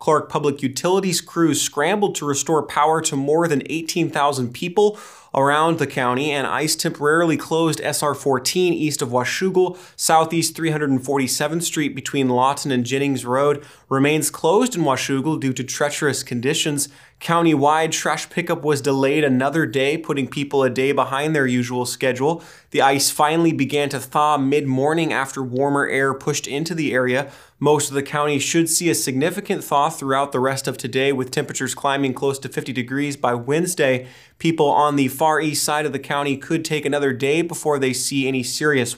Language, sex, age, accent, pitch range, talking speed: English, male, 20-39, American, 135-150 Hz, 170 wpm